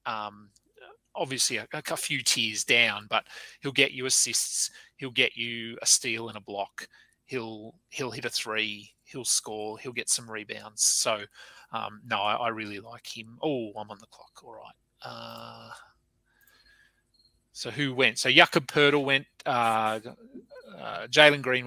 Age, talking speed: 30-49, 160 wpm